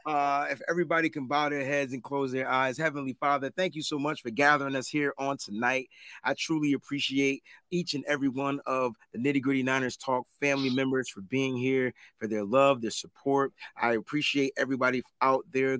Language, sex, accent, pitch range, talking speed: English, male, American, 130-150 Hz, 195 wpm